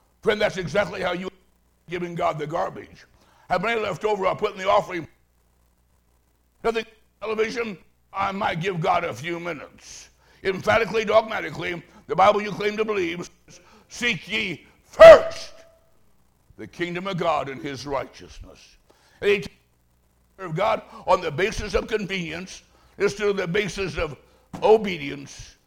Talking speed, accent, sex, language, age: 145 wpm, American, male, English, 60-79